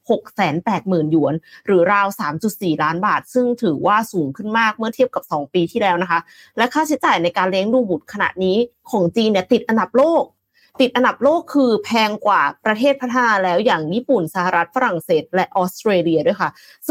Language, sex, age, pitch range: Thai, female, 20-39, 185-265 Hz